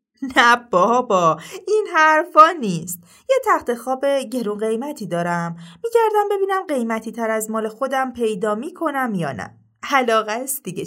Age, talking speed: 30-49, 145 wpm